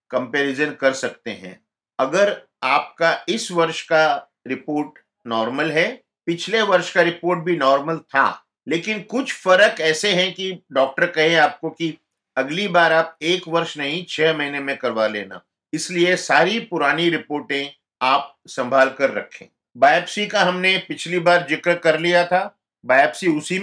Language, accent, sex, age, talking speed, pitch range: Hindi, native, male, 50-69, 150 wpm, 135-170 Hz